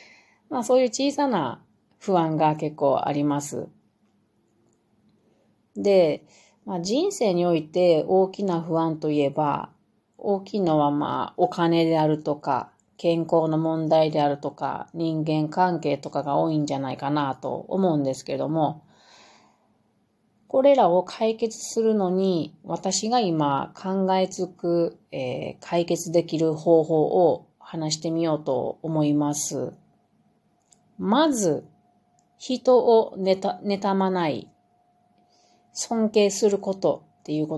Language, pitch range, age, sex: Japanese, 155-195 Hz, 30-49, female